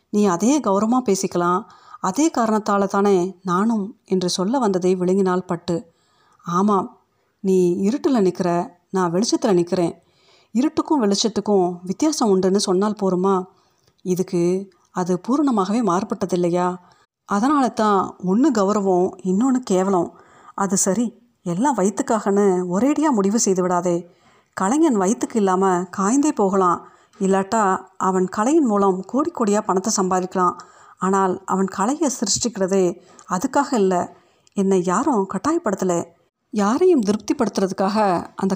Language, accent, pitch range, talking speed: Tamil, native, 185-225 Hz, 105 wpm